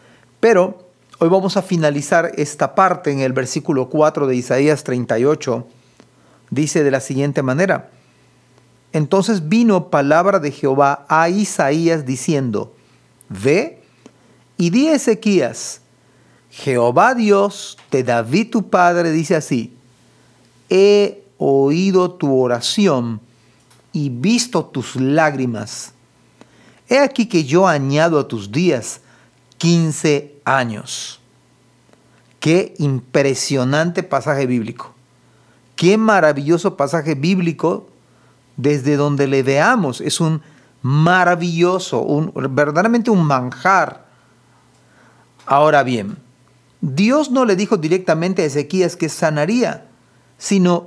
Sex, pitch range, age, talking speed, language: male, 135-180 Hz, 40-59, 105 wpm, Spanish